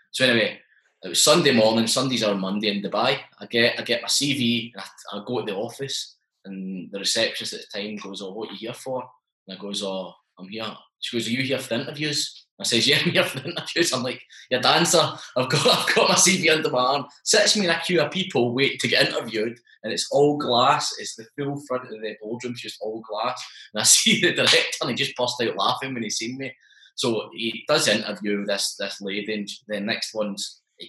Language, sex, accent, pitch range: English, male, British, 100-130 Hz